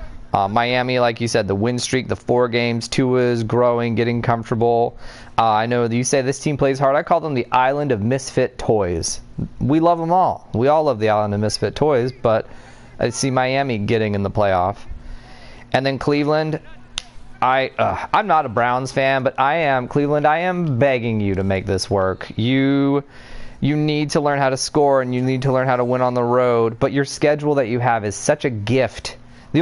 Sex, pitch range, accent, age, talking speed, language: male, 115-140 Hz, American, 30-49, 215 wpm, English